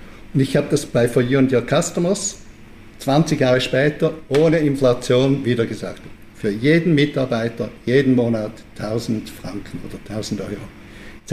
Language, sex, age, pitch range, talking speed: German, male, 60-79, 110-140 Hz, 150 wpm